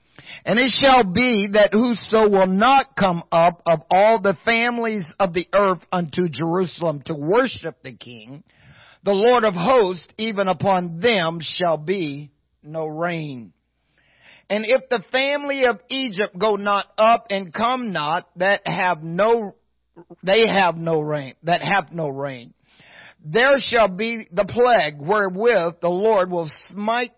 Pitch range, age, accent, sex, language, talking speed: 160-215 Hz, 50-69, American, male, English, 150 wpm